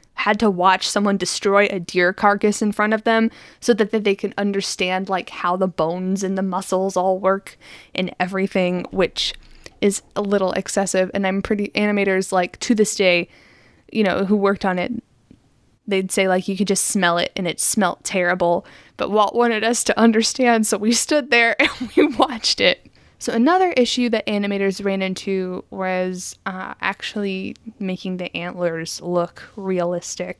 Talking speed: 175 wpm